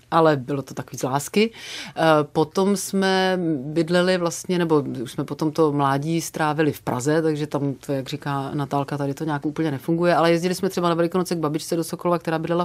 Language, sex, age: Czech, female, 30-49